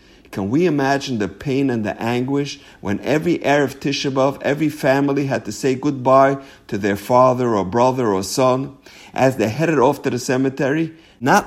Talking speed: 175 wpm